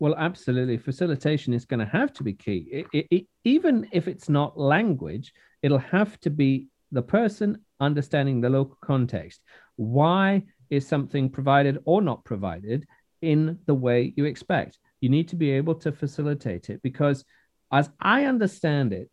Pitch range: 125-170 Hz